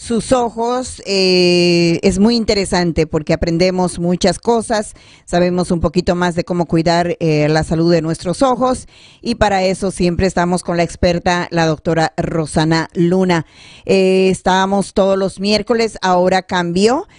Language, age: Spanish, 40-59